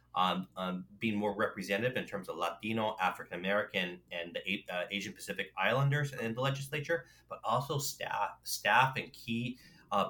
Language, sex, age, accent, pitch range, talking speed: English, male, 30-49, American, 100-120 Hz, 165 wpm